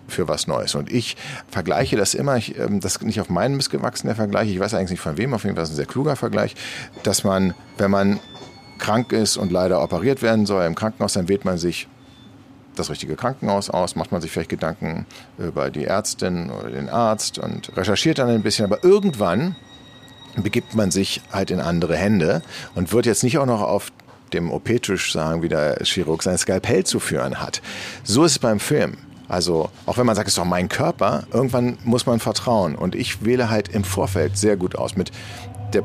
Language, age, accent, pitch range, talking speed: German, 50-69, German, 100-125 Hz, 210 wpm